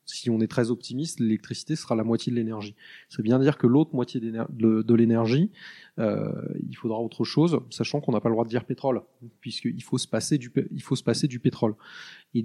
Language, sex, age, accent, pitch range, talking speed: French, male, 20-39, French, 115-135 Hz, 195 wpm